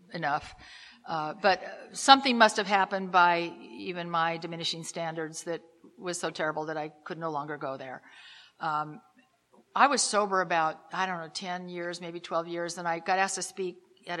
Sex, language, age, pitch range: female, English, 50-69, 165-195 Hz